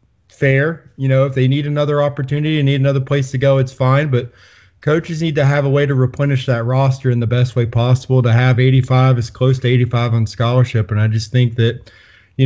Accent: American